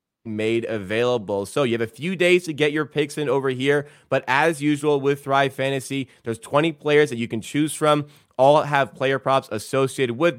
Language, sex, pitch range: English, male, 115-135 Hz